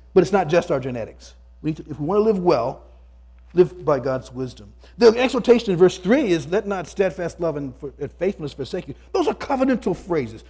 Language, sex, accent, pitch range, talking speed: English, male, American, 120-185 Hz, 210 wpm